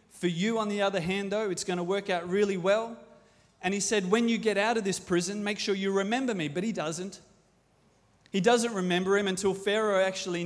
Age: 30-49